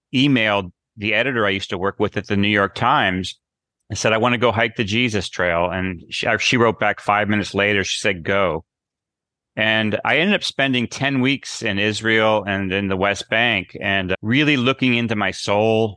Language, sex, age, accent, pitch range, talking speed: English, male, 30-49, American, 95-115 Hz, 205 wpm